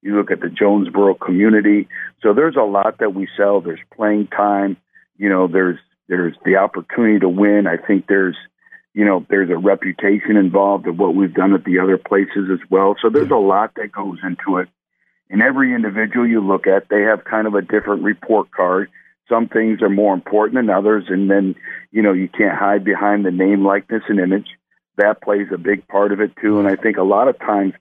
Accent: American